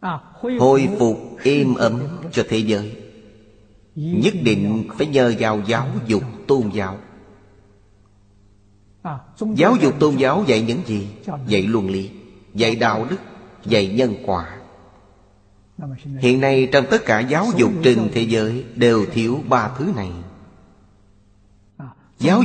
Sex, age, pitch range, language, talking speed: male, 30-49, 100-130 Hz, Vietnamese, 130 wpm